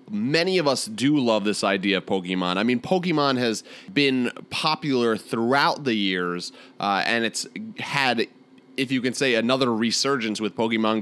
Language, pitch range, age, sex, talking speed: English, 100-140 Hz, 30-49, male, 165 wpm